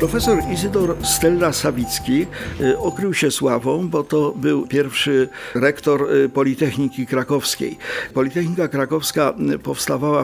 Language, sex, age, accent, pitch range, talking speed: Polish, male, 50-69, native, 125-150 Hz, 100 wpm